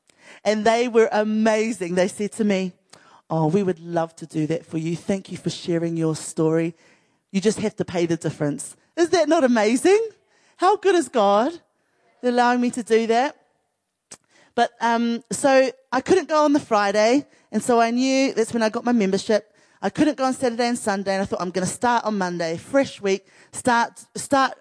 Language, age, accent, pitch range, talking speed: English, 30-49, British, 180-240 Hz, 200 wpm